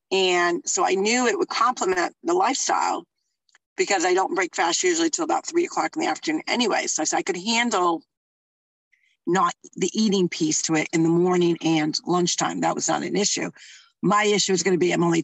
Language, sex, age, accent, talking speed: English, female, 40-59, American, 210 wpm